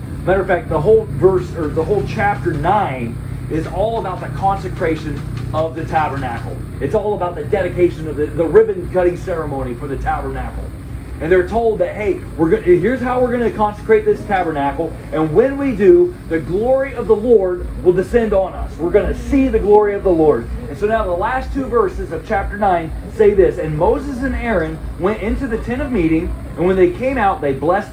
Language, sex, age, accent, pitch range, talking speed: English, male, 30-49, American, 160-220 Hz, 205 wpm